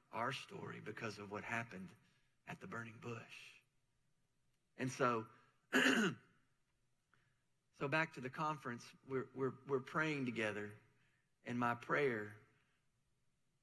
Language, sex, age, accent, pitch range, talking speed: English, male, 40-59, American, 120-140 Hz, 110 wpm